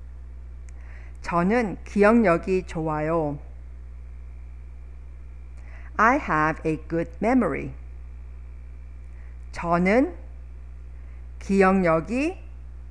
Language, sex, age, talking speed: English, female, 50-69, 45 wpm